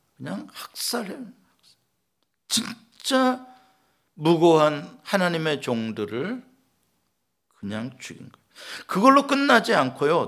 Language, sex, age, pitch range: Korean, male, 50-69, 135-215 Hz